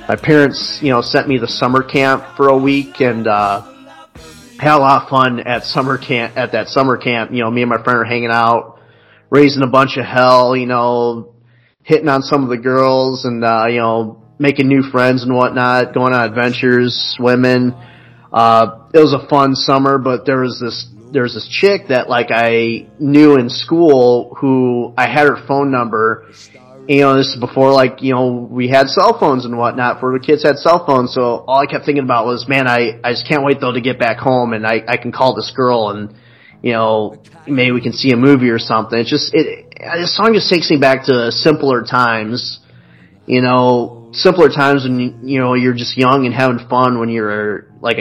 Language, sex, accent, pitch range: English, male, American, 120-135 Hz